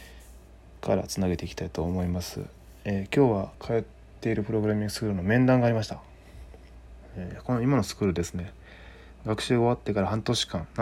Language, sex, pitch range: Japanese, male, 80-105 Hz